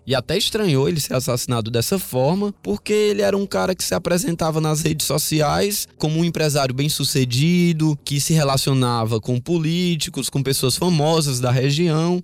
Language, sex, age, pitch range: Portuguese, male, 20-39, 125-165 Hz